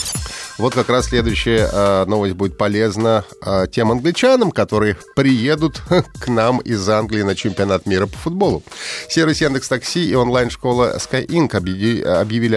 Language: Russian